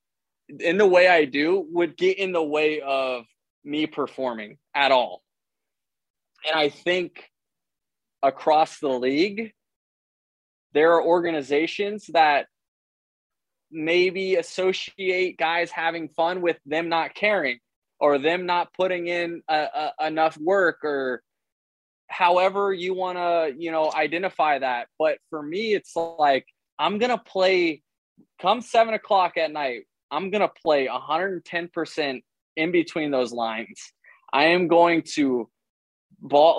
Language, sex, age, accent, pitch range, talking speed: English, male, 20-39, American, 145-180 Hz, 130 wpm